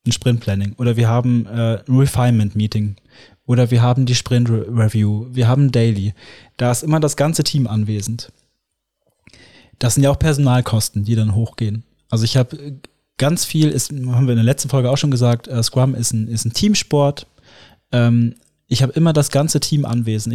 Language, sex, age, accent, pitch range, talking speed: German, male, 20-39, German, 115-140 Hz, 185 wpm